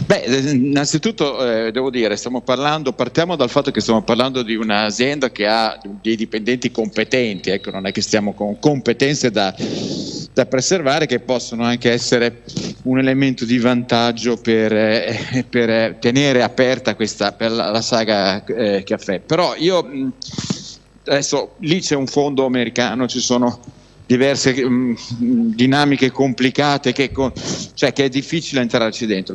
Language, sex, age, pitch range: Italian, male, 50-69, 115-140 Hz